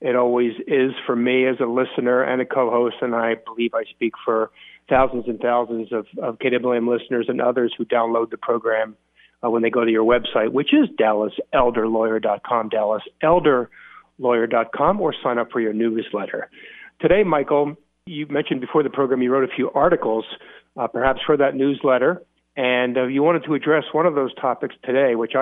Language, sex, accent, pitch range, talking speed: English, male, American, 120-140 Hz, 180 wpm